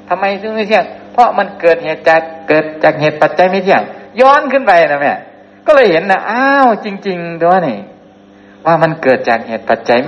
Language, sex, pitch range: Thai, male, 100-170 Hz